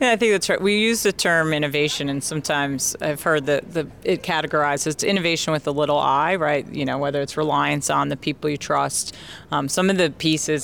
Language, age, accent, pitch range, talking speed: English, 40-59, American, 140-160 Hz, 215 wpm